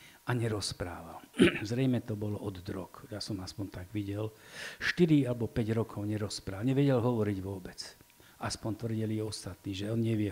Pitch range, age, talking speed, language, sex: 105-125 Hz, 50-69, 150 wpm, Slovak, male